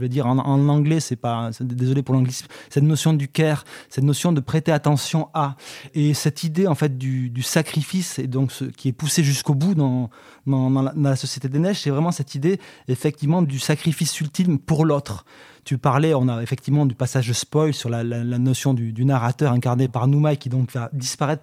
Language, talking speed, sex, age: French, 225 wpm, male, 20-39